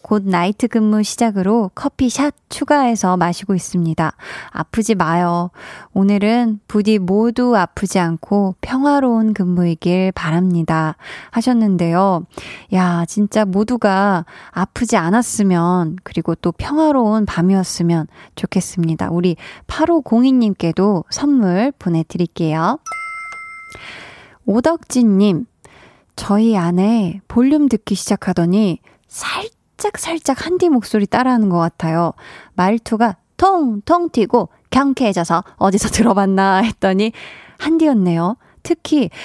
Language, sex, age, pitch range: Korean, female, 20-39, 180-240 Hz